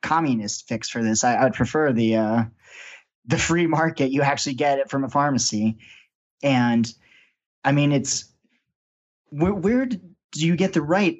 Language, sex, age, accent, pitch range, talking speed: English, male, 30-49, American, 120-155 Hz, 160 wpm